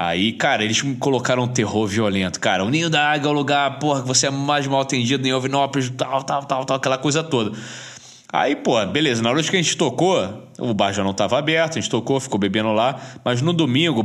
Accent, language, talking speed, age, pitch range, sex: Brazilian, Portuguese, 240 wpm, 20-39, 110-150 Hz, male